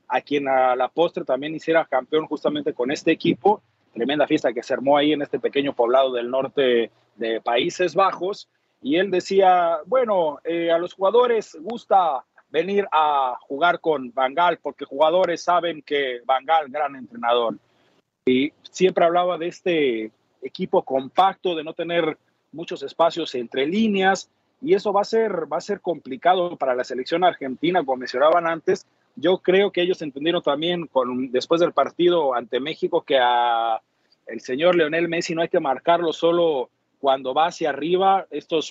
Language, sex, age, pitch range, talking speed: Spanish, male, 40-59, 135-180 Hz, 165 wpm